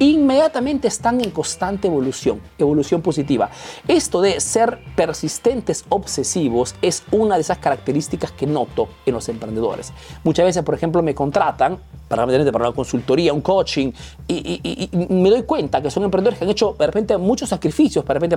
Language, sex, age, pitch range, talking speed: Spanish, male, 40-59, 165-230 Hz, 165 wpm